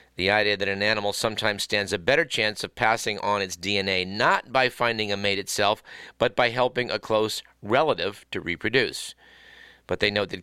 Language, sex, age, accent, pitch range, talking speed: English, male, 50-69, American, 100-125 Hz, 190 wpm